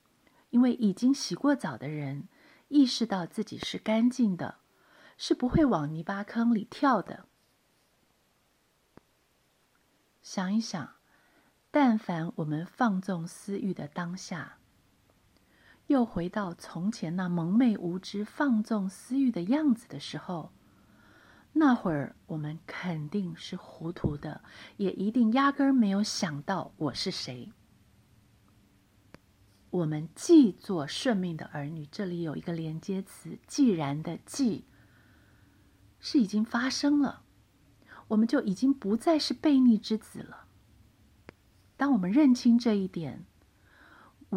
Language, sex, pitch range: Chinese, female, 150-235 Hz